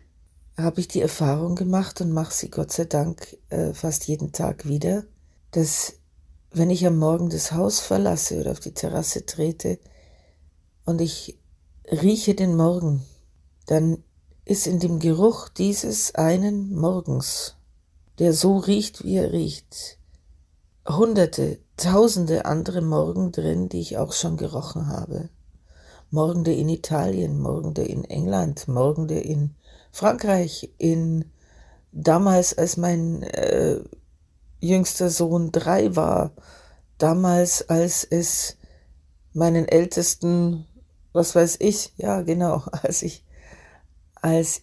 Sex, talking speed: female, 120 wpm